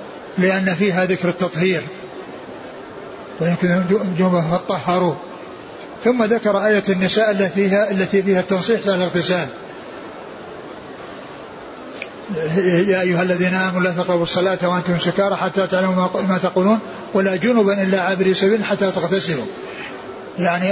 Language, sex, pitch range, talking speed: Arabic, male, 180-200 Hz, 115 wpm